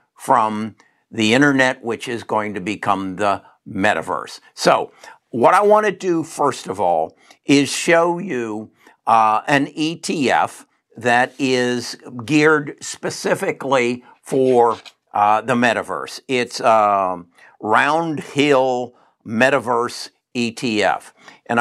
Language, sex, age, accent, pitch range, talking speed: English, male, 60-79, American, 120-150 Hz, 110 wpm